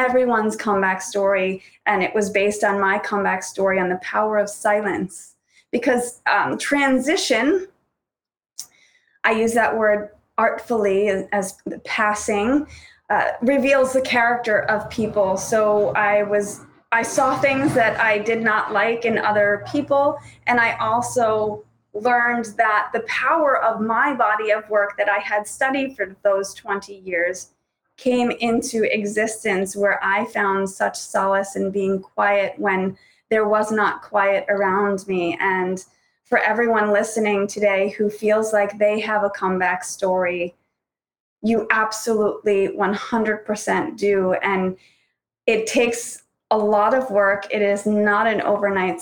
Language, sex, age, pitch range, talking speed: English, female, 30-49, 195-225 Hz, 140 wpm